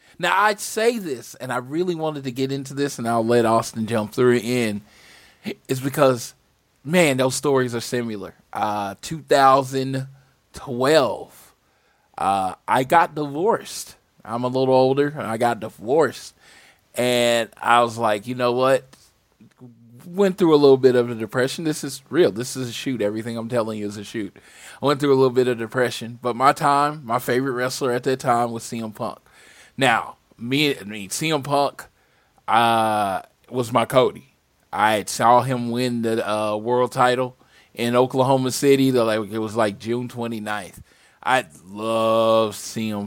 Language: English